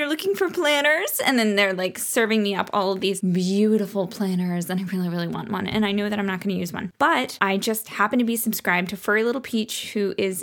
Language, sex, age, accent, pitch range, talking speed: English, female, 10-29, American, 185-215 Hz, 255 wpm